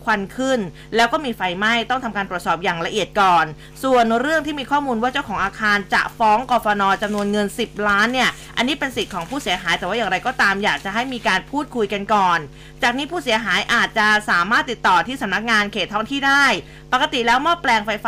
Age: 20-39